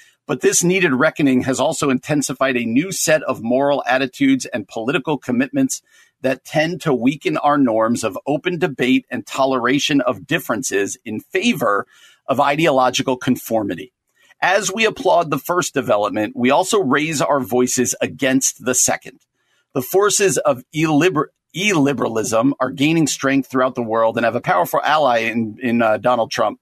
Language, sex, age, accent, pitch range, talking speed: English, male, 50-69, American, 125-155 Hz, 155 wpm